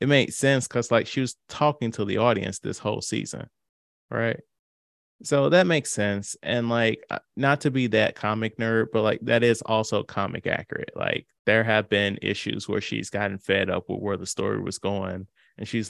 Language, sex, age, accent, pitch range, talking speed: English, male, 20-39, American, 105-125 Hz, 195 wpm